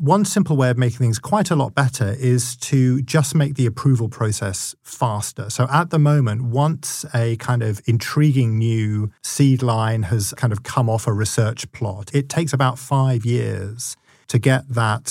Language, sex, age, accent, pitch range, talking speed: English, male, 40-59, British, 110-130 Hz, 185 wpm